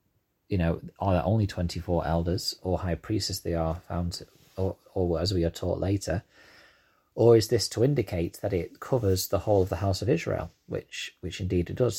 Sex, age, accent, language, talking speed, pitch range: male, 30-49, British, English, 205 wpm, 85-100 Hz